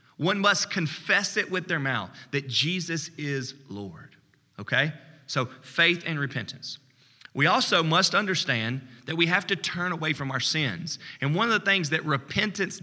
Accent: American